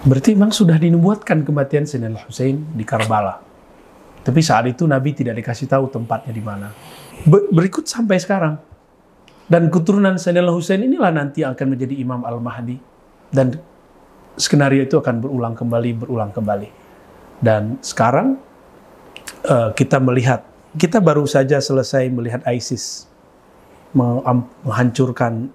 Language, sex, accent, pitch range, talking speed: Indonesian, male, native, 120-165 Hz, 120 wpm